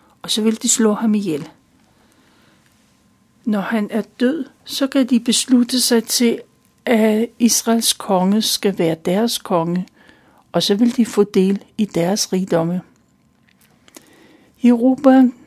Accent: native